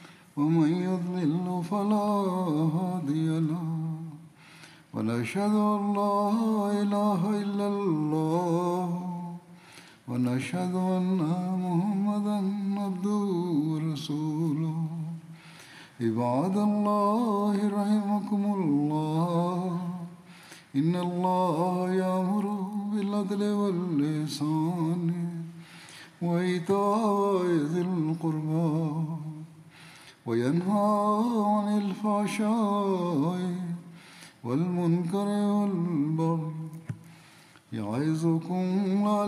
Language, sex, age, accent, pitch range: Malayalam, male, 60-79, native, 160-200 Hz